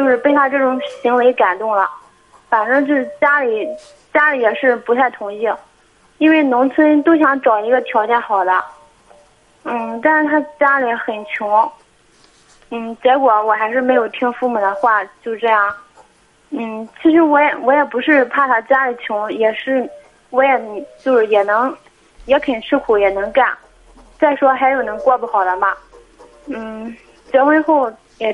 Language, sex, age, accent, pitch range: Chinese, female, 20-39, native, 215-275 Hz